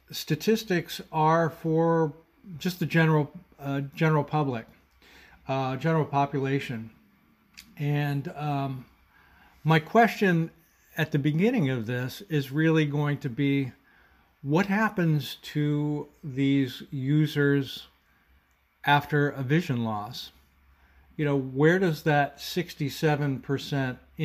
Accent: American